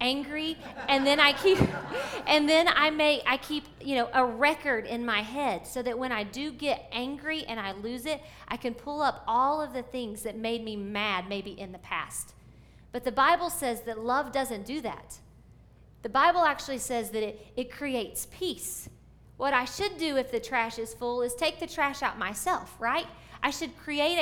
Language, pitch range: English, 235-310 Hz